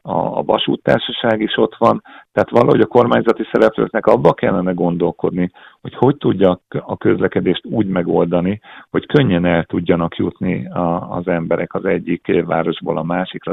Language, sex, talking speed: Hungarian, male, 140 wpm